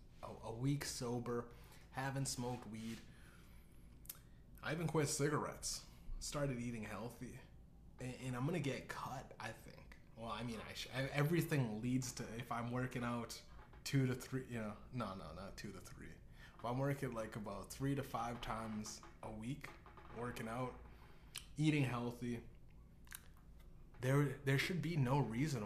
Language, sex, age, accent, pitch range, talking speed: English, male, 20-39, American, 110-145 Hz, 145 wpm